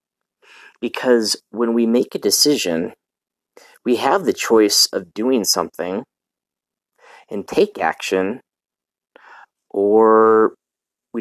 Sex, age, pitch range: male, 30-49, 105-135 Hz